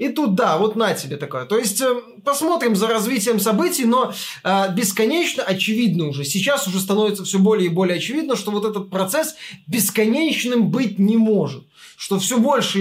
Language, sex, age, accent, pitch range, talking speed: Russian, male, 20-39, native, 195-235 Hz, 180 wpm